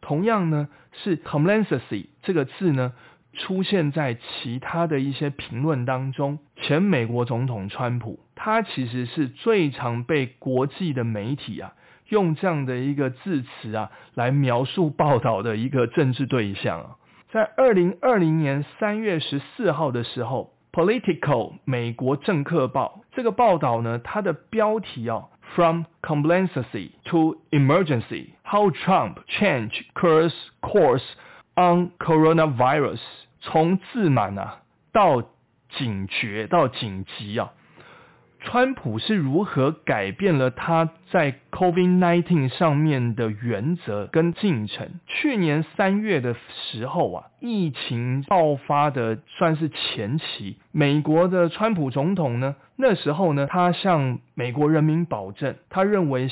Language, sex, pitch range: Chinese, male, 125-175 Hz